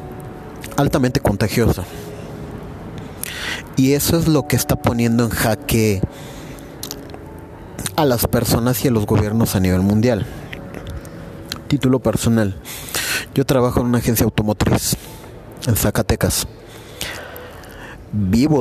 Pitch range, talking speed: 105-125 Hz, 105 wpm